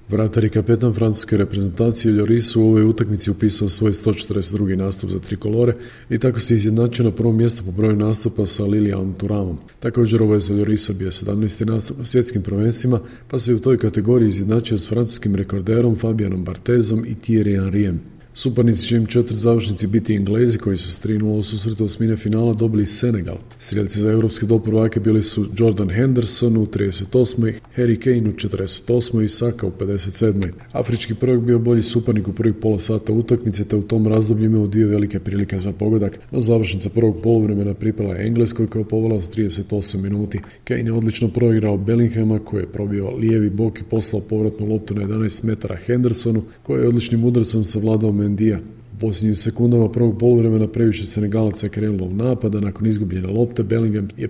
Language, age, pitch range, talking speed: Croatian, 40-59, 105-115 Hz, 180 wpm